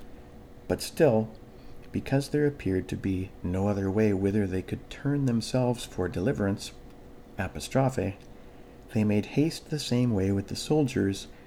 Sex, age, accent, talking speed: male, 50-69, American, 140 wpm